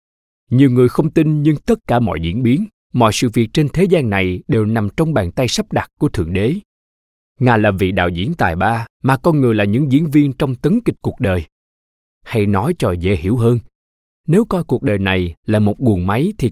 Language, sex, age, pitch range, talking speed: Vietnamese, male, 20-39, 90-150 Hz, 225 wpm